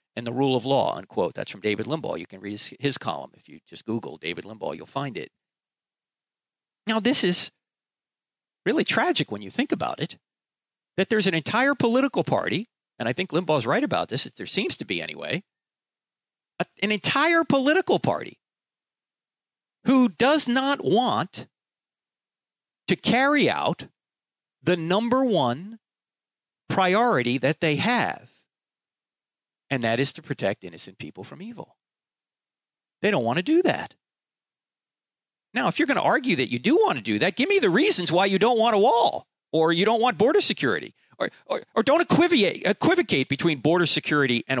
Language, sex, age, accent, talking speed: English, male, 50-69, American, 170 wpm